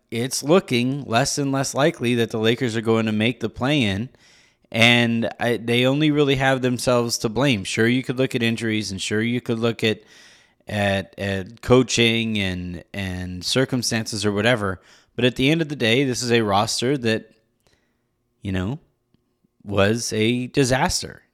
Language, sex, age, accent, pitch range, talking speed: English, male, 30-49, American, 110-135 Hz, 170 wpm